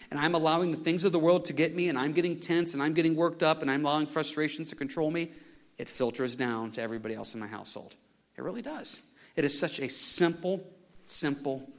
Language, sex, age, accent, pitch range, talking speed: English, male, 40-59, American, 130-170 Hz, 230 wpm